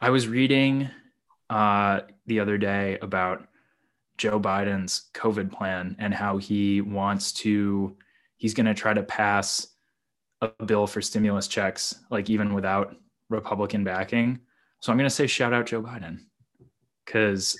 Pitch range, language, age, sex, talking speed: 100-115 Hz, English, 10-29, male, 145 wpm